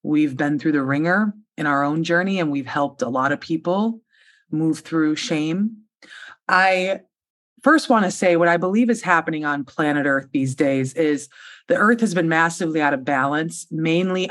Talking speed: 185 wpm